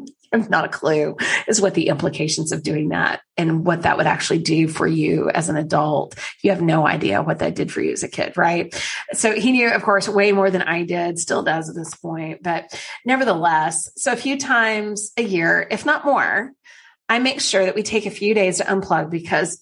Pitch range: 175-235 Hz